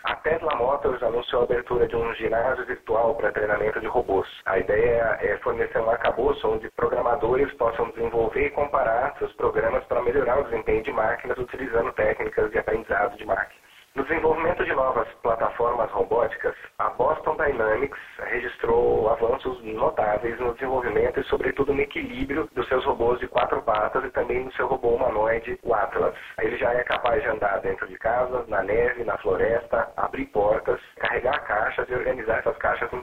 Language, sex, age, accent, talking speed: Portuguese, male, 30-49, Brazilian, 170 wpm